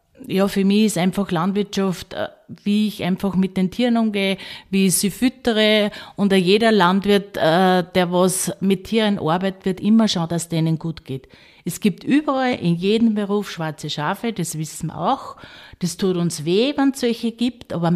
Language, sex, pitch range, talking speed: German, female, 175-205 Hz, 180 wpm